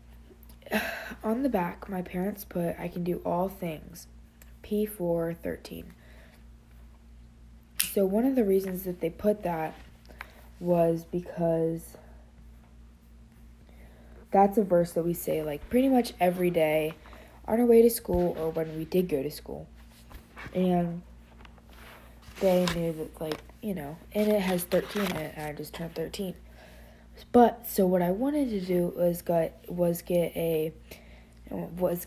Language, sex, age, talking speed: English, female, 20-39, 150 wpm